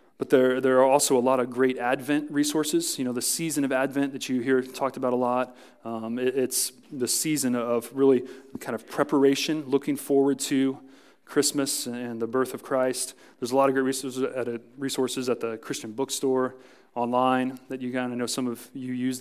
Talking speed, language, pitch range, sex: 210 wpm, English, 125-135 Hz, male